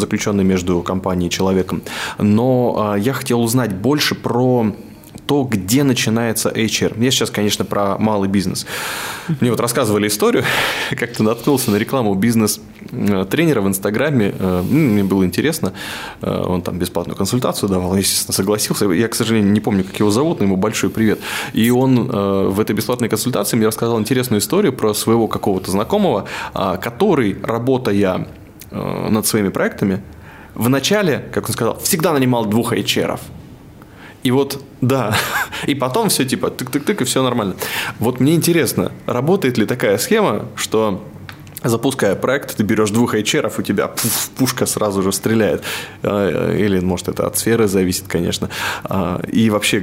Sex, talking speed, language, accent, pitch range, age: male, 150 wpm, Russian, native, 100-120 Hz, 20-39